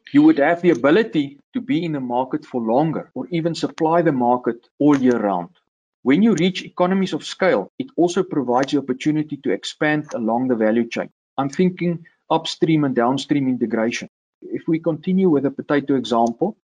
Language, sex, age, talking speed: English, male, 50-69, 180 wpm